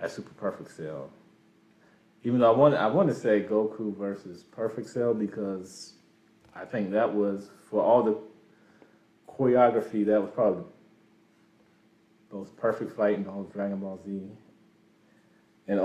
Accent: American